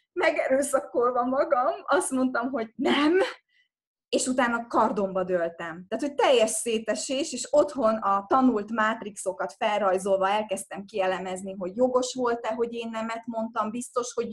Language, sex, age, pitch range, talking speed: Hungarian, female, 20-39, 195-255 Hz, 130 wpm